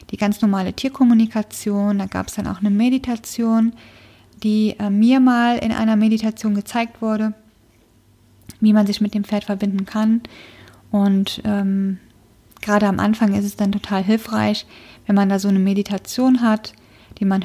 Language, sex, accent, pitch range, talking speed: German, female, German, 190-220 Hz, 160 wpm